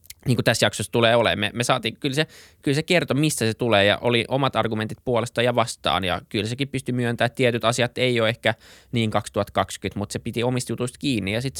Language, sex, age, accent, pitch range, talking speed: Finnish, male, 20-39, native, 105-135 Hz, 220 wpm